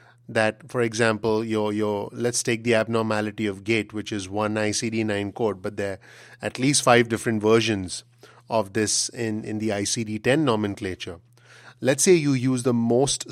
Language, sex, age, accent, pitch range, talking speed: English, male, 30-49, Indian, 110-120 Hz, 165 wpm